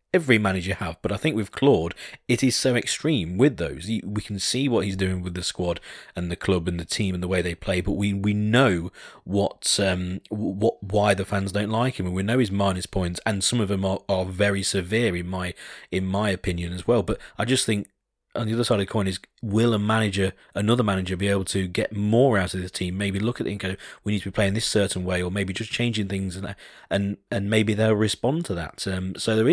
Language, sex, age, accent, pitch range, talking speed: English, male, 30-49, British, 95-115 Hz, 250 wpm